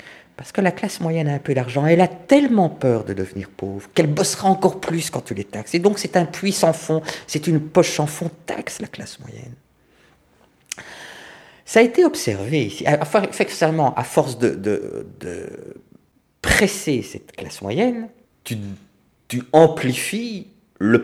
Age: 50-69